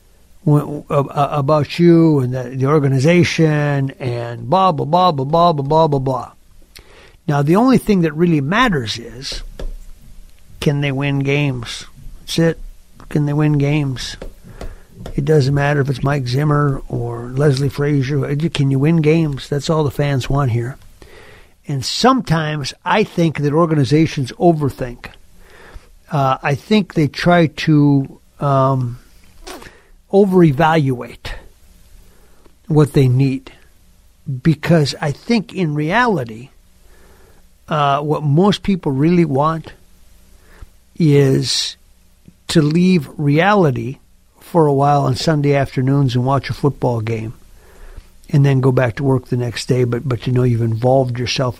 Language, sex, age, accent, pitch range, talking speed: English, male, 60-79, American, 125-155 Hz, 135 wpm